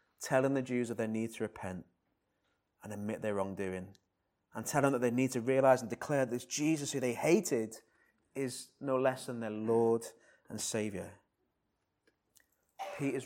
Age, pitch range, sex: 30-49, 105-125 Hz, male